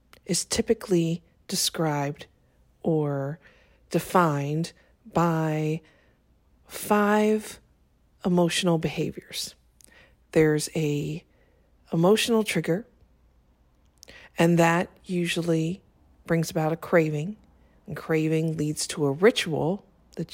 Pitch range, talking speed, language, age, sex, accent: 150-180 Hz, 80 wpm, English, 40-59, female, American